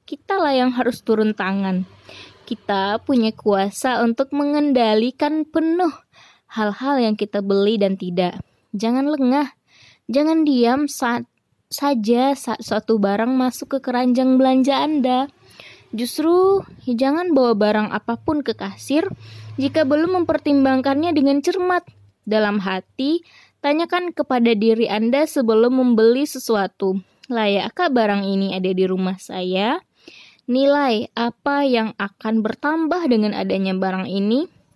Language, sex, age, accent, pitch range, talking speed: Indonesian, female, 20-39, native, 215-285 Hz, 120 wpm